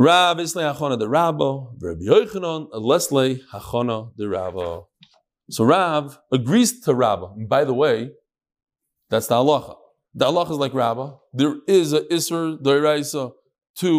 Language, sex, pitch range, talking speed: English, male, 135-205 Hz, 110 wpm